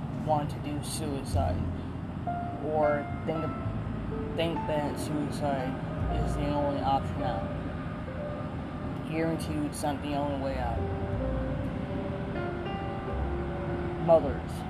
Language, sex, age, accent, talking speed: English, male, 20-39, American, 95 wpm